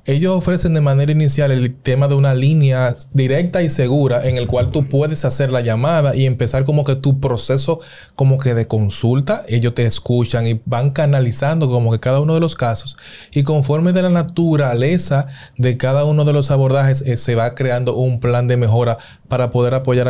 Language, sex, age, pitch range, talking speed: Spanish, male, 20-39, 120-145 Hz, 195 wpm